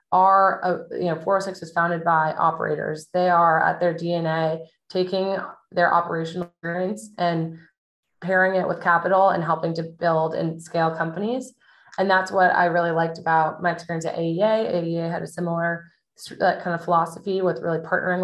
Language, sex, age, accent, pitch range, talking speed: English, female, 20-39, American, 160-185 Hz, 165 wpm